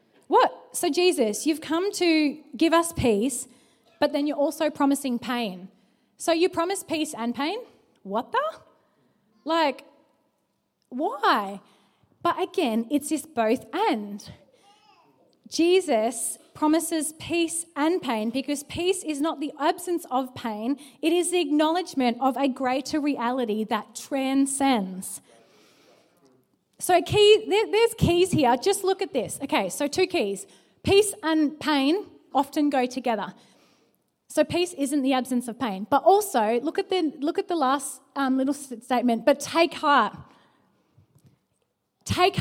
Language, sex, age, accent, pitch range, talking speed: English, female, 20-39, Australian, 240-325 Hz, 135 wpm